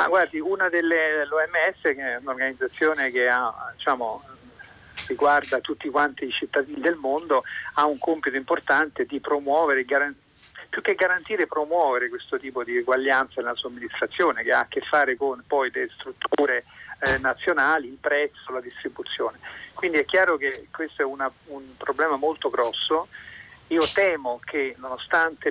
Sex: male